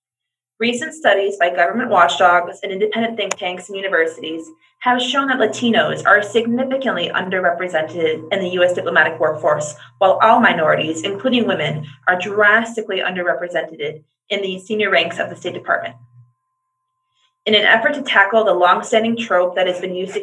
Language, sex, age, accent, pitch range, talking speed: English, female, 30-49, American, 170-215 Hz, 155 wpm